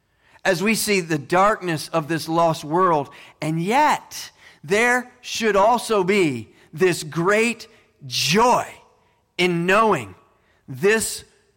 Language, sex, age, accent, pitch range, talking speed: English, male, 40-59, American, 130-210 Hz, 110 wpm